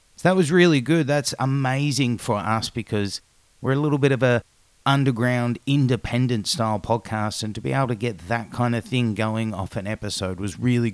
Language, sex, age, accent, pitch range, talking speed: English, male, 30-49, Australian, 105-130 Hz, 190 wpm